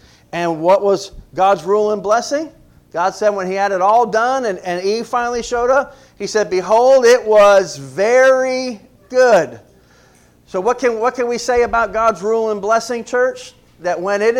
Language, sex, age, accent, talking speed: English, male, 40-59, American, 185 wpm